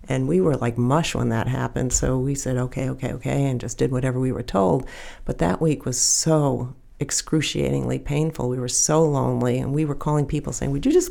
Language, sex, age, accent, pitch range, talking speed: English, female, 60-79, American, 125-150 Hz, 220 wpm